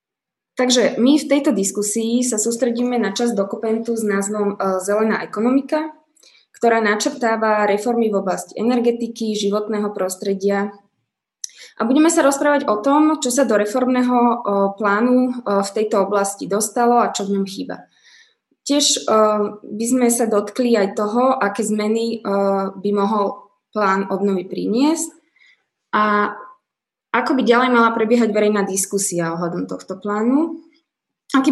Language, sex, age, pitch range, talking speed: Slovak, female, 20-39, 200-250 Hz, 130 wpm